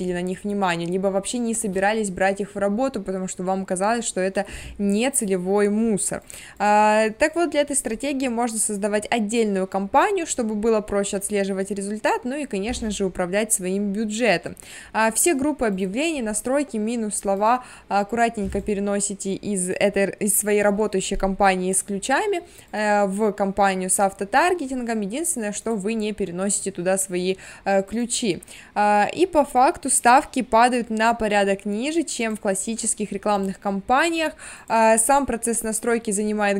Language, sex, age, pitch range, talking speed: Russian, female, 20-39, 200-240 Hz, 140 wpm